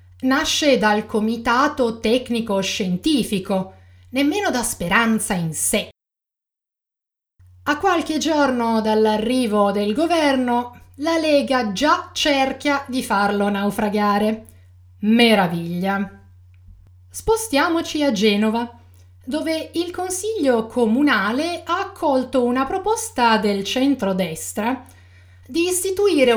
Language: Italian